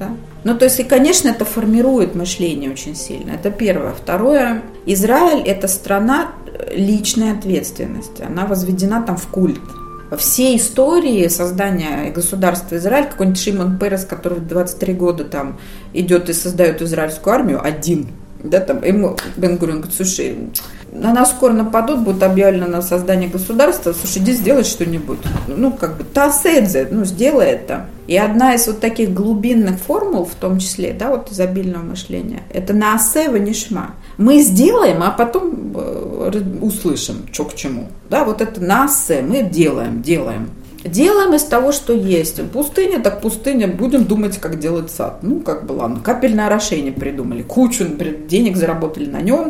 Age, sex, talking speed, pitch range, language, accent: 30-49, female, 160 wpm, 180-250 Hz, Russian, native